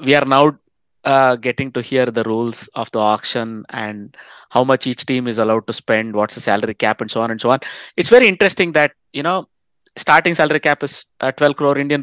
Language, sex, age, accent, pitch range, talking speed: English, male, 20-39, Indian, 115-135 Hz, 225 wpm